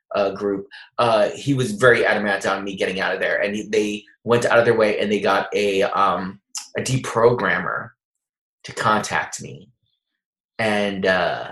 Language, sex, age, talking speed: English, male, 20-39, 160 wpm